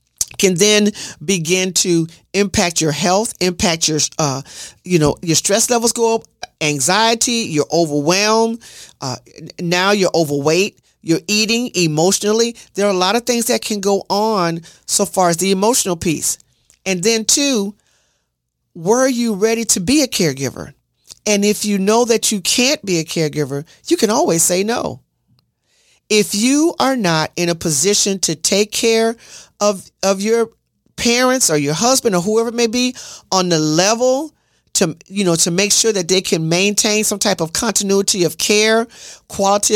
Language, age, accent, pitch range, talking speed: English, 40-59, American, 170-225 Hz, 165 wpm